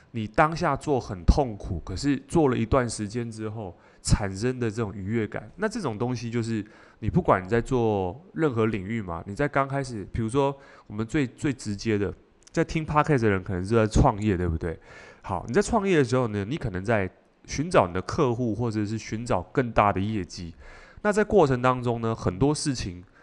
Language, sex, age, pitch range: Chinese, male, 20-39, 105-140 Hz